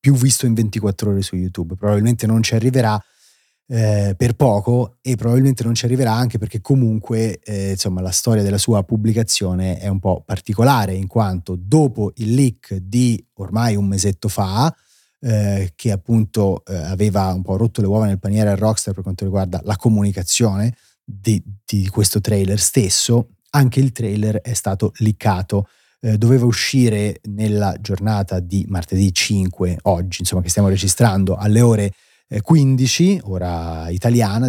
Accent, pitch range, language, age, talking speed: native, 95-120 Hz, Italian, 30-49, 155 wpm